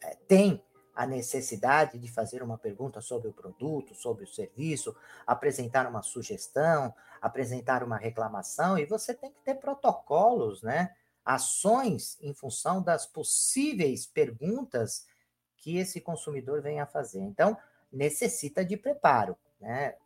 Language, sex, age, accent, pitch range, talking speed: Portuguese, male, 40-59, Brazilian, 120-165 Hz, 130 wpm